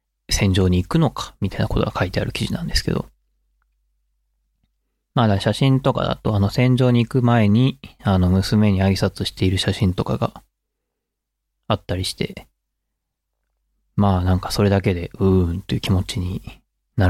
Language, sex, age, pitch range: Japanese, male, 30-49, 90-120 Hz